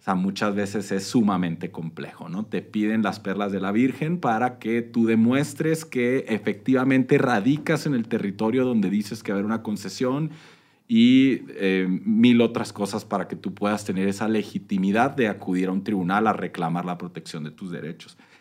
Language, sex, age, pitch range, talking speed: Spanish, male, 40-59, 95-120 Hz, 185 wpm